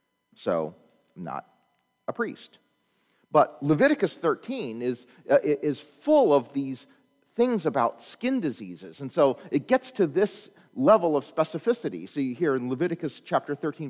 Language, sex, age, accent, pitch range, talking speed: English, male, 40-59, American, 130-195 Hz, 140 wpm